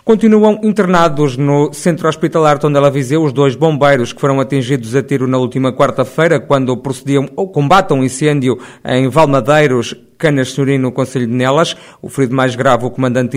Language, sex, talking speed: Portuguese, male, 175 wpm